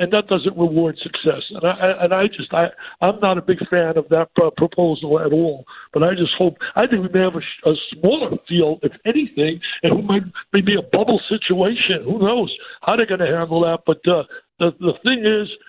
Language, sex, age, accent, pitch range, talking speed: English, male, 60-79, American, 170-215 Hz, 220 wpm